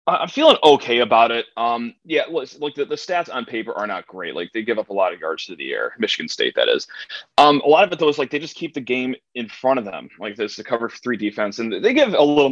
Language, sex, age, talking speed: English, male, 20-39, 290 wpm